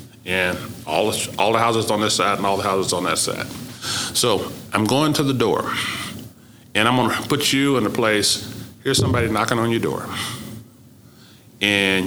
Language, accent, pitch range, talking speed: English, American, 100-125 Hz, 190 wpm